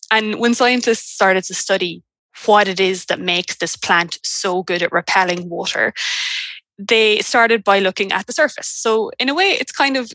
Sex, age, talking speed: female, 20-39, 190 wpm